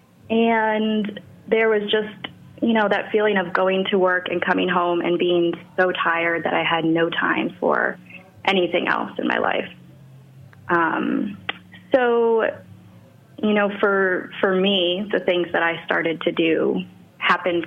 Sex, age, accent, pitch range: female, 20-39, American, 165-190 Hz